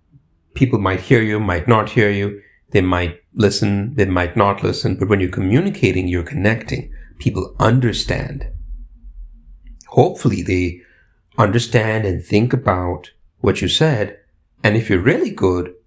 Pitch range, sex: 90-120 Hz, male